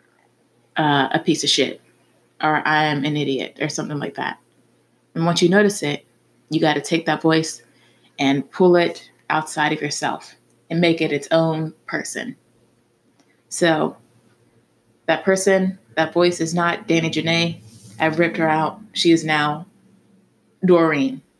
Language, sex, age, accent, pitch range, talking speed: English, female, 20-39, American, 150-170 Hz, 150 wpm